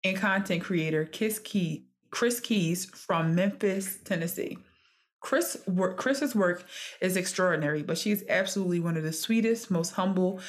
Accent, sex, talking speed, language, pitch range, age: American, female, 125 wpm, English, 165-195 Hz, 20-39